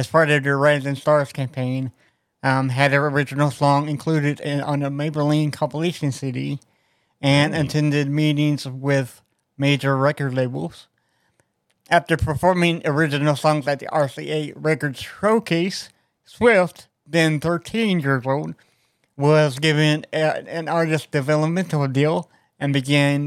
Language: English